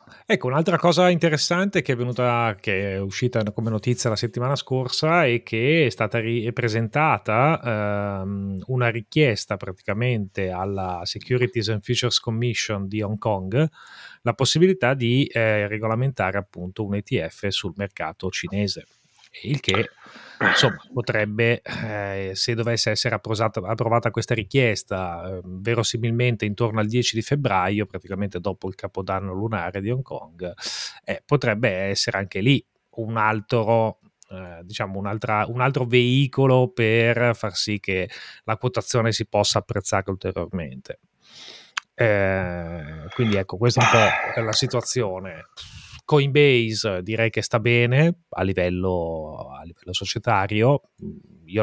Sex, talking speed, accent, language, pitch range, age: male, 130 wpm, native, Italian, 95-120 Hz, 30-49